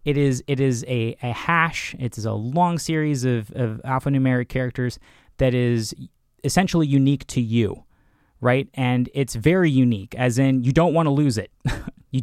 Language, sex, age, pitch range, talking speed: English, male, 20-39, 120-150 Hz, 175 wpm